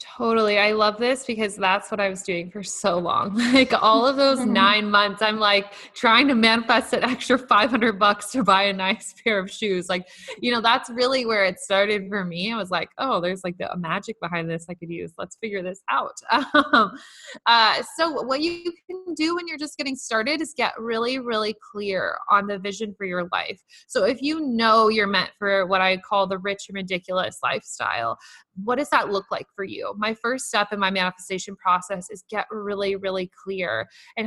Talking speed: 210 wpm